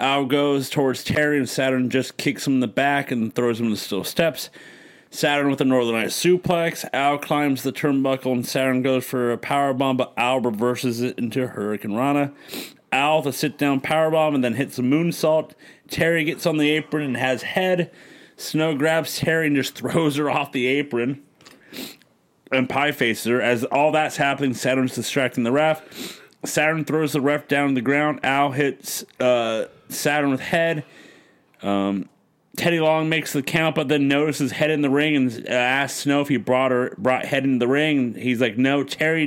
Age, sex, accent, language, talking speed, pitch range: 30-49, male, American, English, 190 wpm, 130-150 Hz